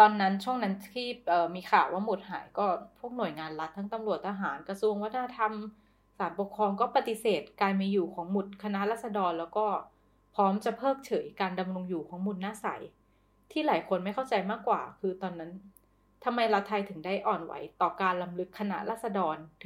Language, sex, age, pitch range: Thai, female, 20-39, 180-215 Hz